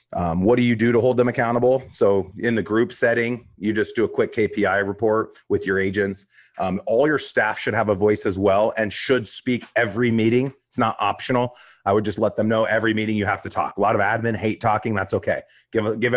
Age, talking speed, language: 30-49, 240 wpm, English